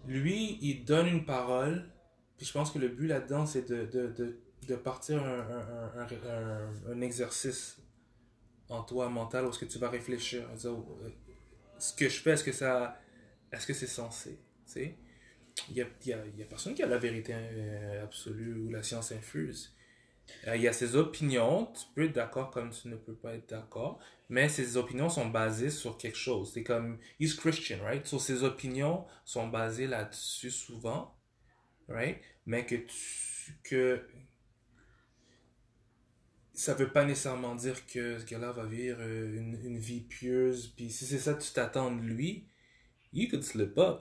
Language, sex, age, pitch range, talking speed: French, male, 20-39, 115-130 Hz, 185 wpm